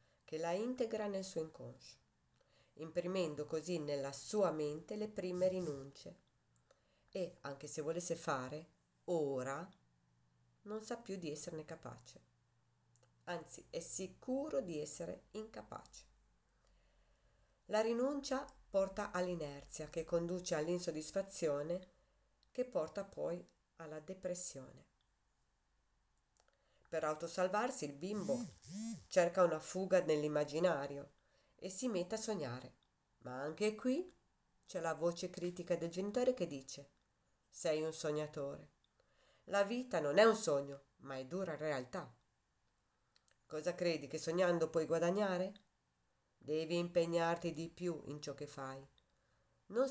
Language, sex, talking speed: Italian, female, 115 wpm